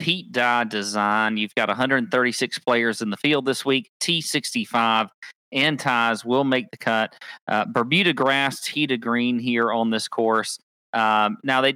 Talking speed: 165 wpm